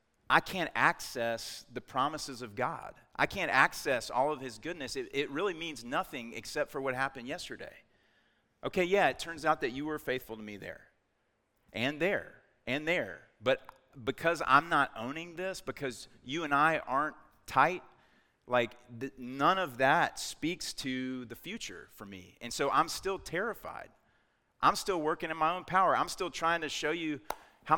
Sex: male